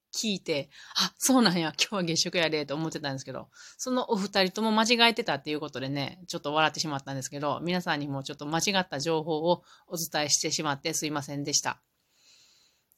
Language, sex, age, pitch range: Japanese, female, 30-49, 150-205 Hz